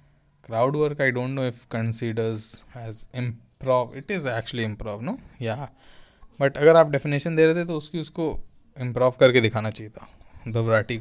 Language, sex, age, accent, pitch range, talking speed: Hindi, male, 20-39, native, 115-155 Hz, 170 wpm